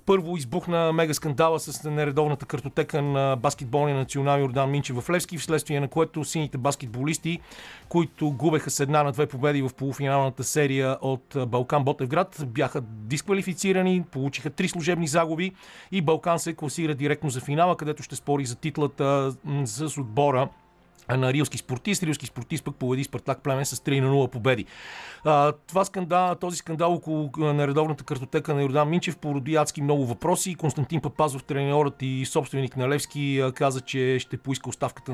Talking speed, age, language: 155 wpm, 40-59, Bulgarian